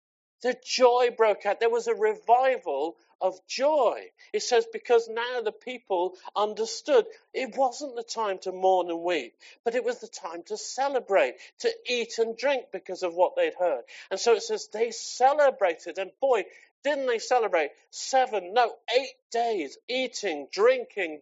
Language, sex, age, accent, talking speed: English, male, 50-69, British, 165 wpm